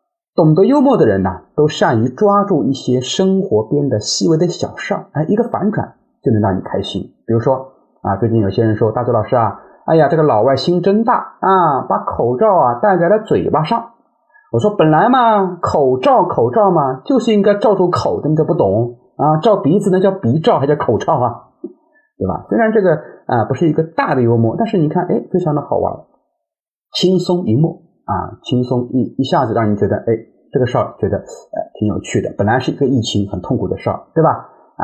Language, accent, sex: Chinese, native, male